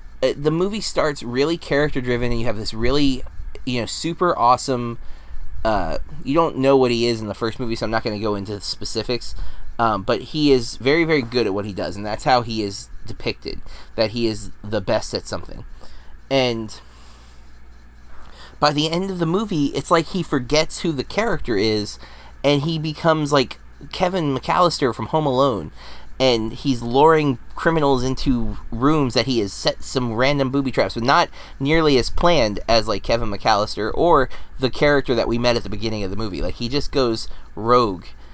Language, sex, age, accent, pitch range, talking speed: English, male, 20-39, American, 105-145 Hz, 190 wpm